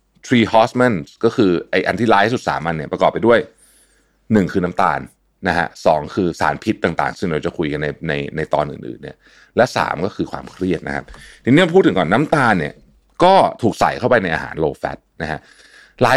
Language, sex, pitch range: Thai, male, 90-130 Hz